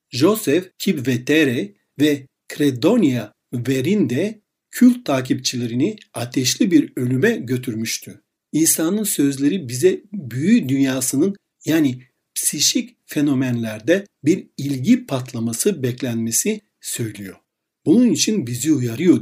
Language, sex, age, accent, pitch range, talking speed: Turkish, male, 60-79, native, 125-195 Hz, 85 wpm